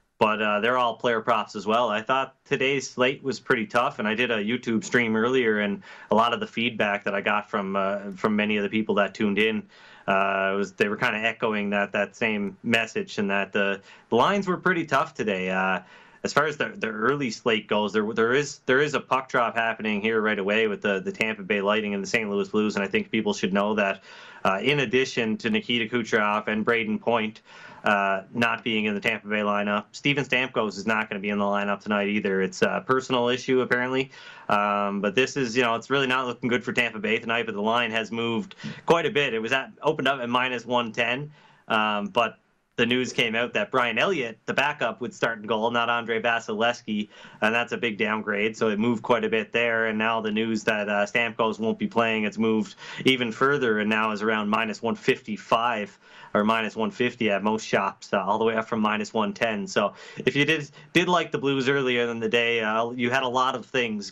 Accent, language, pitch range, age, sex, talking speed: American, English, 105-125 Hz, 30-49, male, 230 wpm